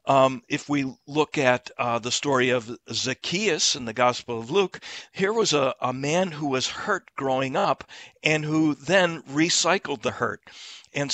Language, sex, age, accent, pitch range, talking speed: English, male, 60-79, American, 125-150 Hz, 175 wpm